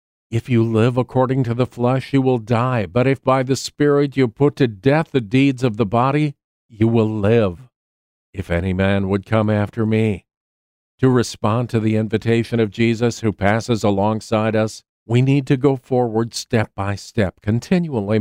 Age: 50-69